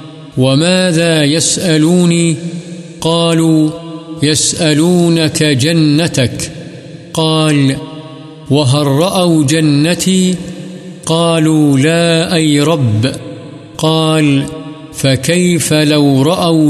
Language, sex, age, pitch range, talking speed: Urdu, male, 50-69, 145-160 Hz, 60 wpm